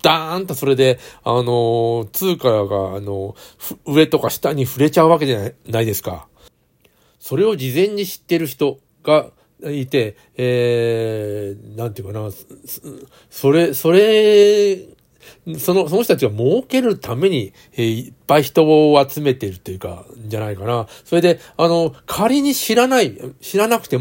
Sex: male